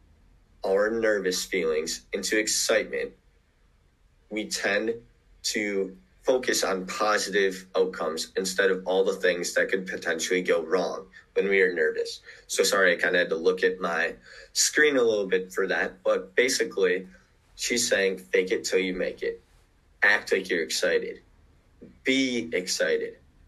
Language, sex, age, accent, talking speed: English, male, 20-39, American, 150 wpm